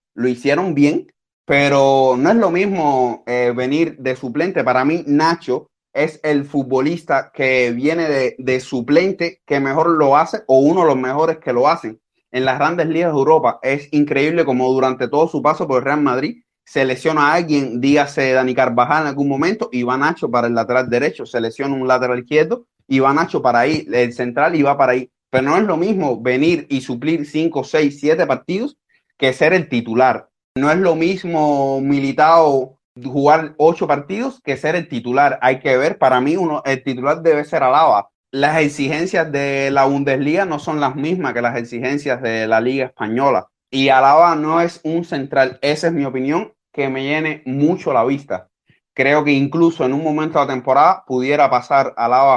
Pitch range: 130-155 Hz